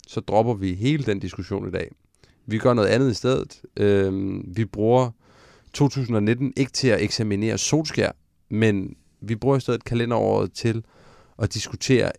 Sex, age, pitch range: male, 30-49, 100-125 Hz